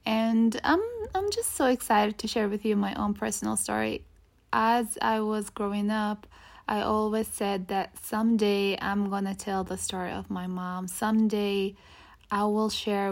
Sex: female